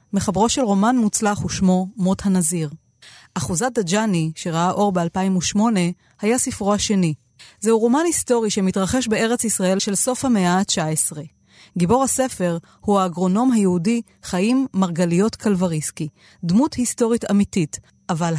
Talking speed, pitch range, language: 120 wpm, 175-230 Hz, Hebrew